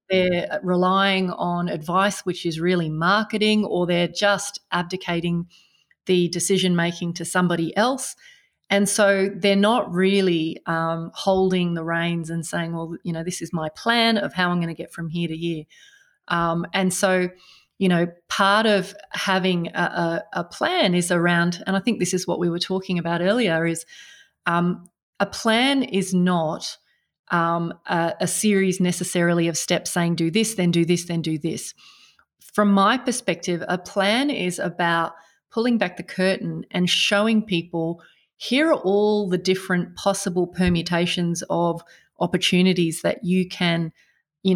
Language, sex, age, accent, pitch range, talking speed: English, female, 30-49, Australian, 170-200 Hz, 160 wpm